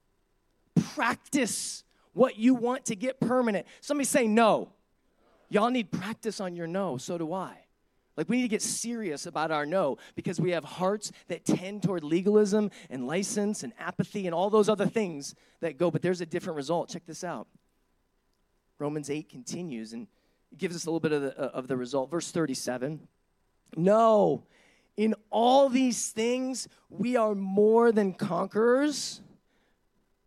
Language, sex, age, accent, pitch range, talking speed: English, male, 30-49, American, 165-225 Hz, 160 wpm